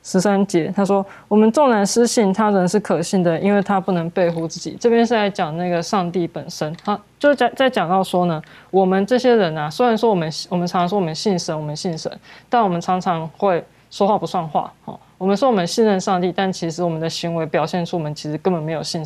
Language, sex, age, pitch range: Chinese, female, 20-39, 170-210 Hz